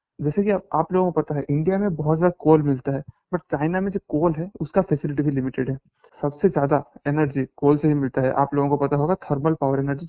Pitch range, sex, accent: 145-175 Hz, male, native